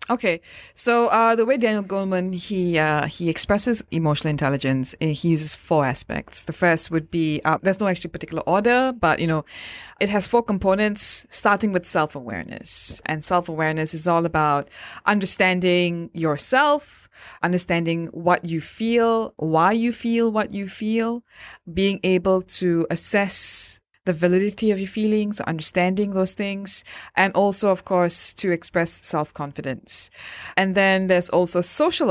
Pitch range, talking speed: 160-200 Hz, 145 wpm